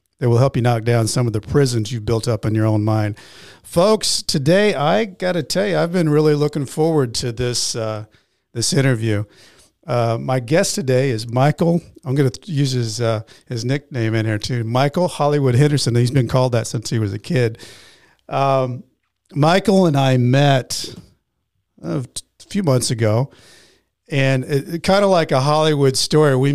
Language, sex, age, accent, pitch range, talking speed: English, male, 50-69, American, 120-150 Hz, 185 wpm